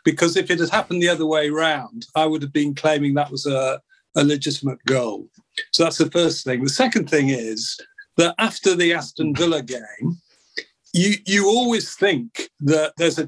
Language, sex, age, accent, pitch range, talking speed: English, male, 50-69, British, 145-200 Hz, 190 wpm